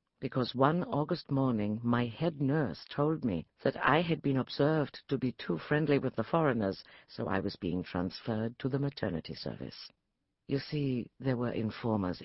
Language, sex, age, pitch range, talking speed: English, female, 50-69, 115-150 Hz, 170 wpm